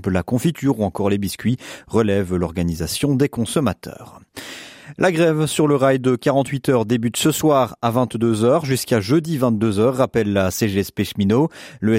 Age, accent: 30-49, French